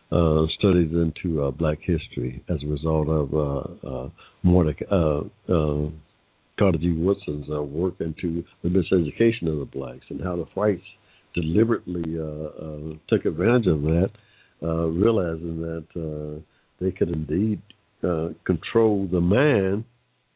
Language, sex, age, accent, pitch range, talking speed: English, male, 60-79, American, 80-105 Hz, 140 wpm